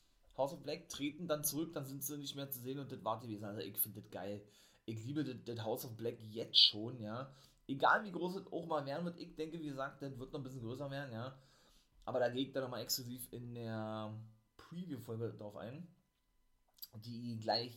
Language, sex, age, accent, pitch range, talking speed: German, male, 30-49, German, 110-150 Hz, 235 wpm